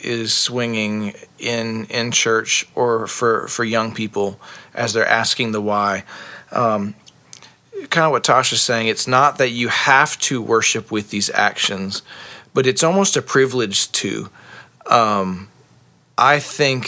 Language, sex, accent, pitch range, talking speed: English, male, American, 110-130 Hz, 140 wpm